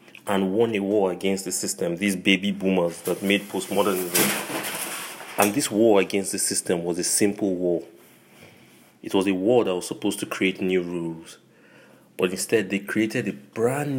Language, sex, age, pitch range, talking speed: English, male, 30-49, 90-105 Hz, 170 wpm